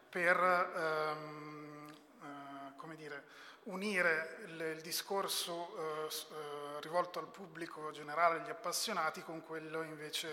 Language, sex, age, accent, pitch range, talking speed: Italian, male, 30-49, native, 155-170 Hz, 120 wpm